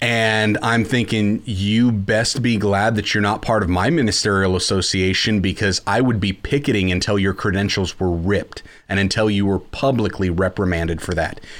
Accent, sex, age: American, male, 30-49